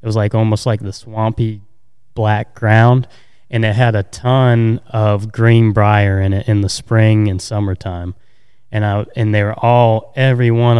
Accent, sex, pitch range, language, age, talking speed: American, male, 105-125 Hz, English, 20-39, 180 wpm